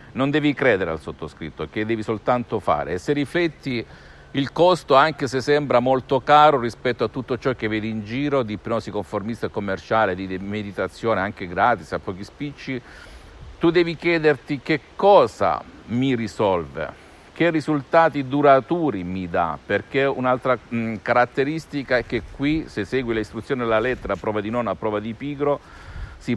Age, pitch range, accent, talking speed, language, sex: 50-69, 105-130 Hz, native, 160 wpm, Italian, male